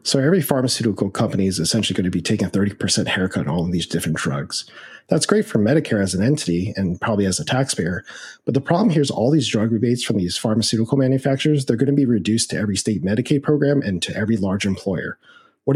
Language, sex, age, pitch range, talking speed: English, male, 40-59, 100-125 Hz, 225 wpm